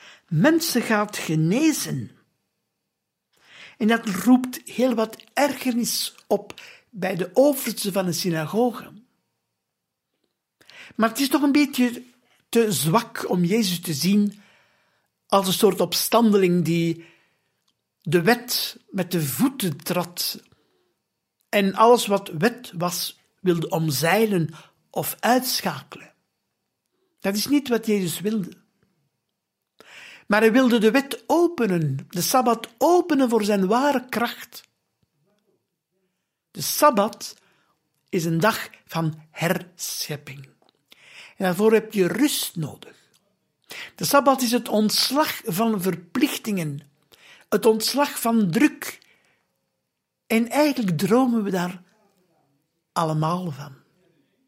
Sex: male